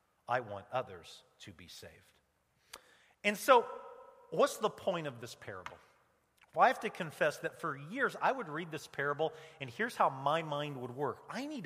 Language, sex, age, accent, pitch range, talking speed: English, male, 40-59, American, 130-215 Hz, 185 wpm